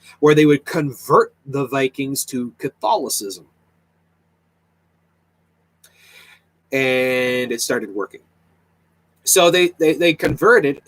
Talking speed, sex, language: 95 wpm, male, English